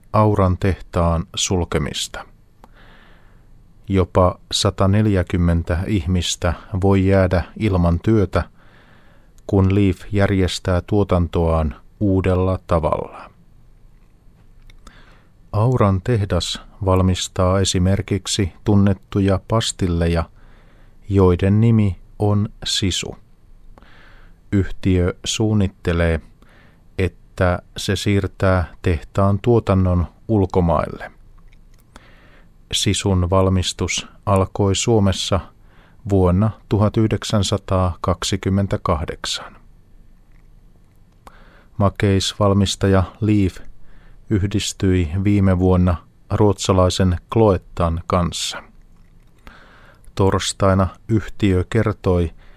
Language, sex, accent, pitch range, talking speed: Finnish, male, native, 90-105 Hz, 60 wpm